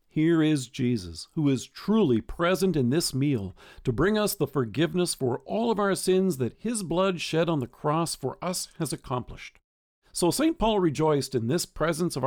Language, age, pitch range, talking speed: English, 50-69, 130-190 Hz, 190 wpm